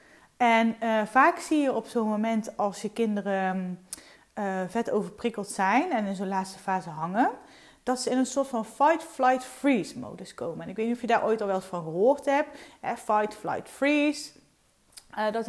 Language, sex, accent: Dutch, female, Dutch